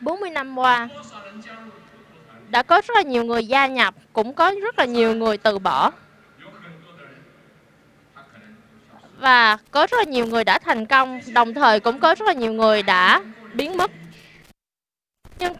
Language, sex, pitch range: Vietnamese, female, 220-295 Hz